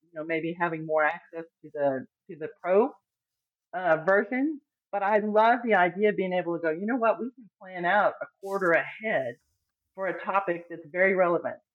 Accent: American